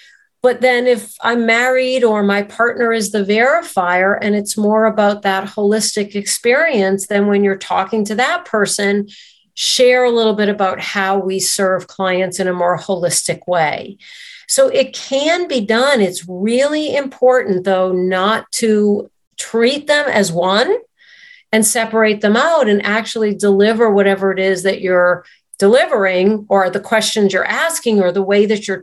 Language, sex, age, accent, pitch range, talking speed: English, female, 50-69, American, 200-255 Hz, 160 wpm